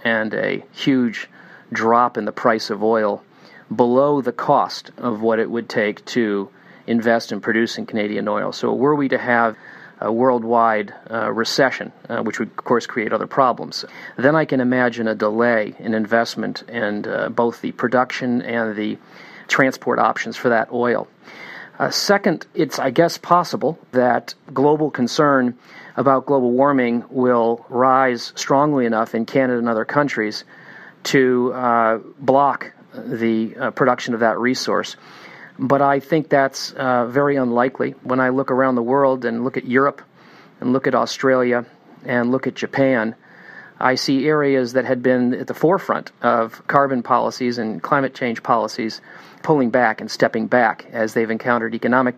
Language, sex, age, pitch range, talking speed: English, male, 40-59, 115-135 Hz, 160 wpm